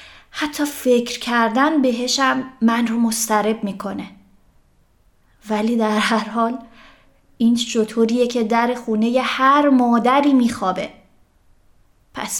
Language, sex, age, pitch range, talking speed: Persian, female, 30-49, 205-245 Hz, 100 wpm